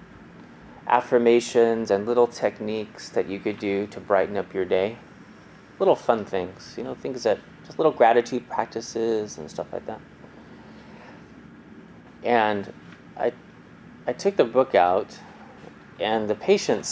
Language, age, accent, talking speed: English, 30-49, American, 135 wpm